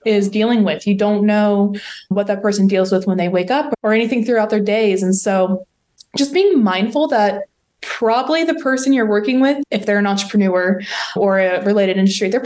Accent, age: American, 20-39